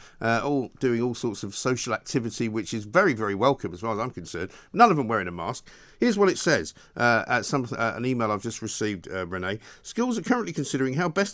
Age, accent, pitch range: 50-69, British, 105-140 Hz